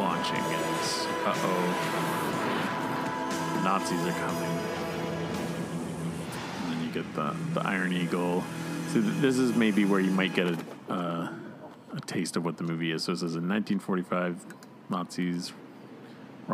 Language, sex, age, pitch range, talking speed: English, male, 30-49, 85-120 Hz, 140 wpm